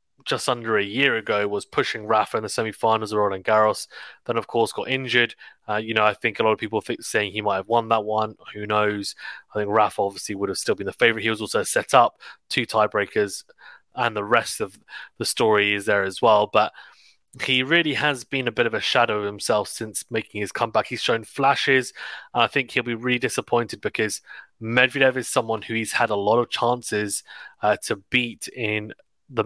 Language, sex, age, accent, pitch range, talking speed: English, male, 20-39, British, 105-120 Hz, 220 wpm